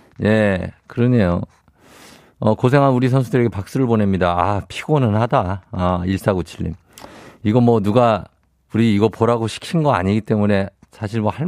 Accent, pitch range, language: native, 95-140 Hz, Korean